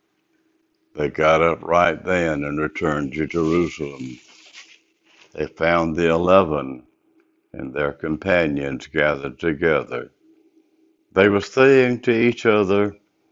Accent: American